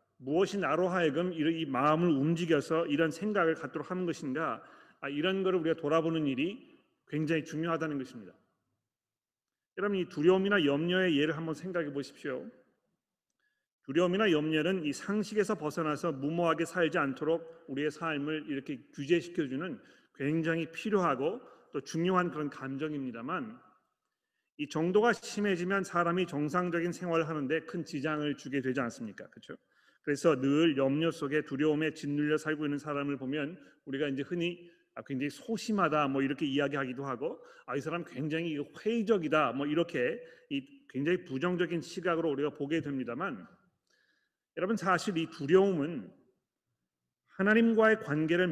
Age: 40-59